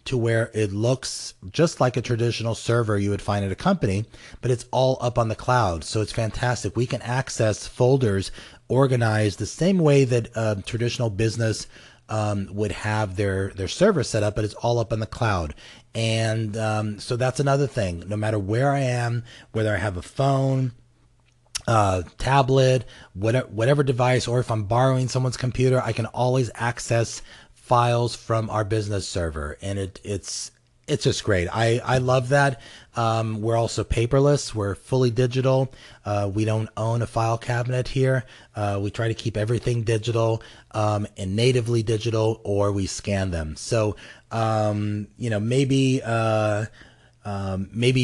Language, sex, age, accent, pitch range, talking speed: English, male, 30-49, American, 105-125 Hz, 165 wpm